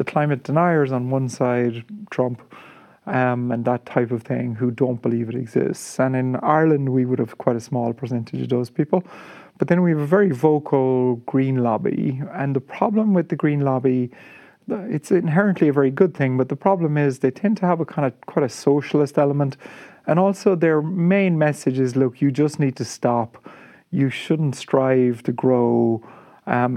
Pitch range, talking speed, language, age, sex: 125-155 Hz, 195 wpm, English, 30-49, male